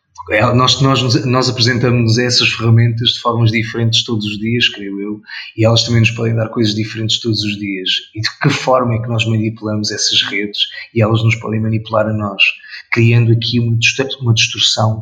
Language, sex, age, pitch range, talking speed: Portuguese, male, 20-39, 110-120 Hz, 190 wpm